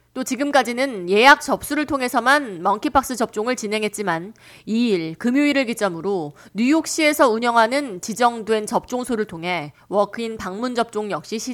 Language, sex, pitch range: Japanese, female, 185-270 Hz